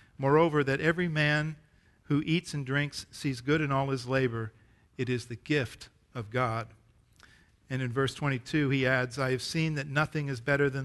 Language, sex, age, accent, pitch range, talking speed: English, male, 50-69, American, 120-150 Hz, 190 wpm